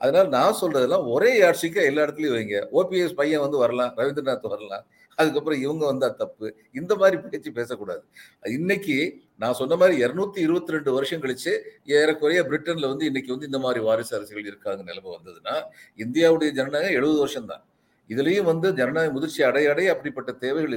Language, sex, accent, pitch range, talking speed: Tamil, male, native, 125-180 Hz, 160 wpm